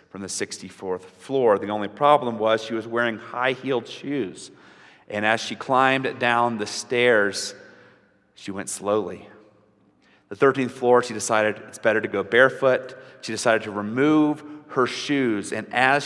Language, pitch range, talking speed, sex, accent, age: English, 100-115 Hz, 155 wpm, male, American, 30-49